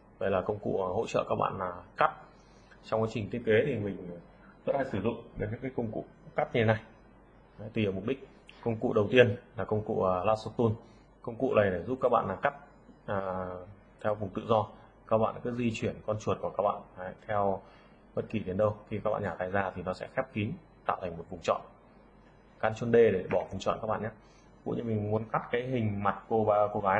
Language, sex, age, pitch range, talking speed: Vietnamese, male, 20-39, 95-115 Hz, 245 wpm